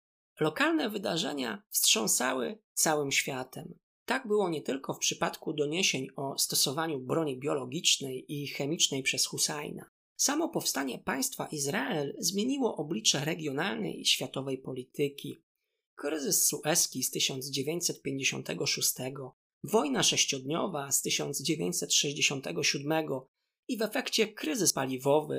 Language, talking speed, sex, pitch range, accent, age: Polish, 100 wpm, male, 140-195 Hz, native, 20-39